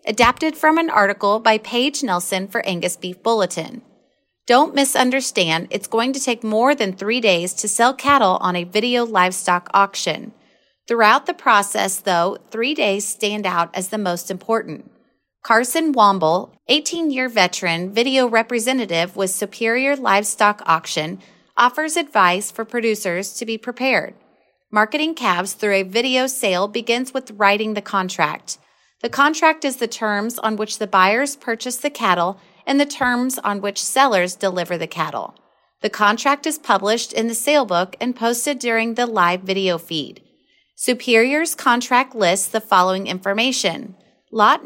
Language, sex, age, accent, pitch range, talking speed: English, female, 30-49, American, 190-250 Hz, 150 wpm